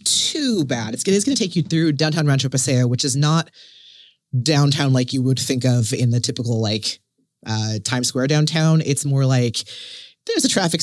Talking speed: 195 wpm